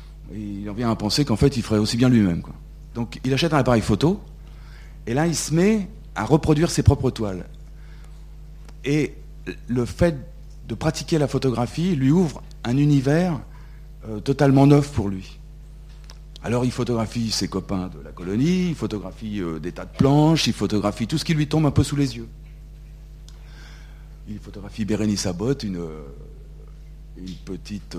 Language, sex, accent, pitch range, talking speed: French, male, French, 110-150 Hz, 170 wpm